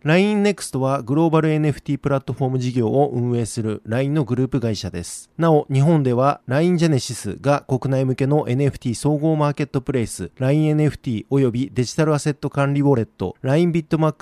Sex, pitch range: male, 130-160 Hz